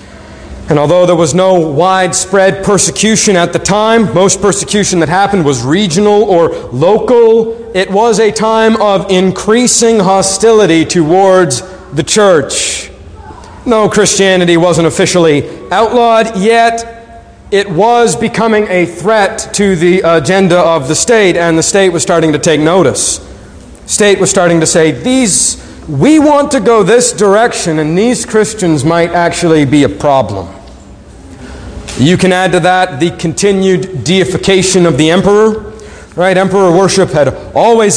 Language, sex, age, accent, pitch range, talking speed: English, male, 40-59, American, 170-215 Hz, 140 wpm